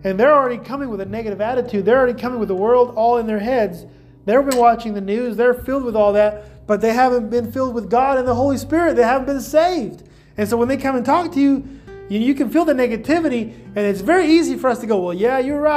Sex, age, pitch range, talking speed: male, 30-49, 200-255 Hz, 260 wpm